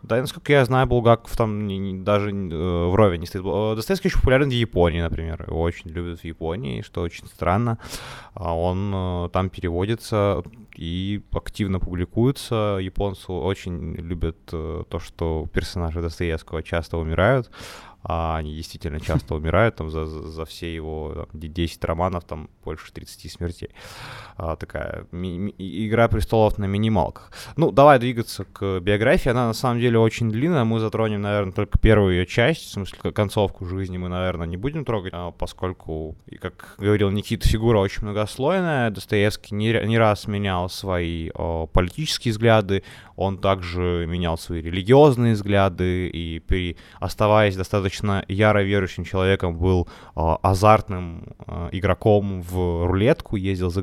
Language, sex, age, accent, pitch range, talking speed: Ukrainian, male, 20-39, native, 85-110 Hz, 135 wpm